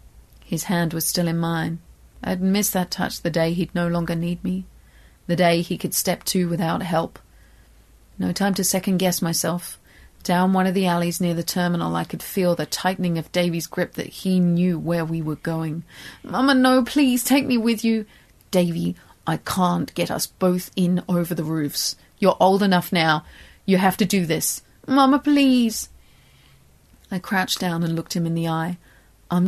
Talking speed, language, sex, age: 185 wpm, English, female, 30-49